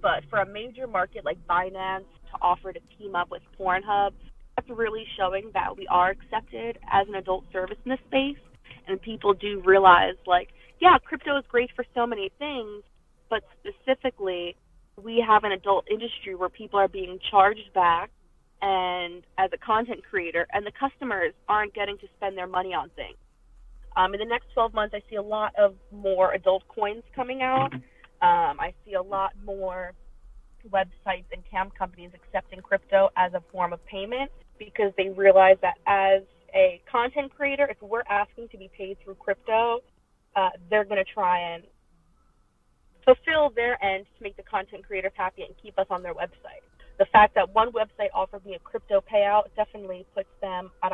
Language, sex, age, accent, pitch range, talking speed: English, female, 20-39, American, 190-230 Hz, 180 wpm